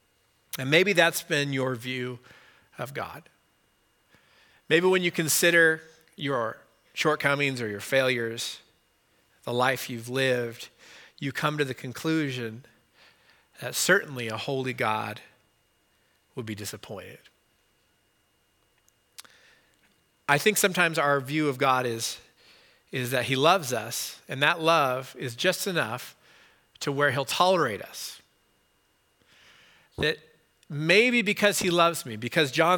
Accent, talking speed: American, 120 wpm